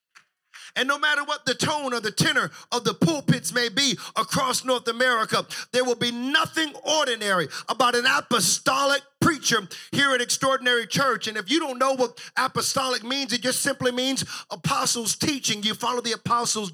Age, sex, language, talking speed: 50-69, male, English, 170 wpm